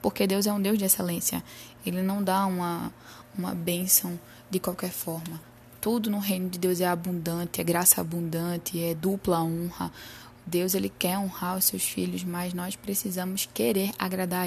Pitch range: 170-200 Hz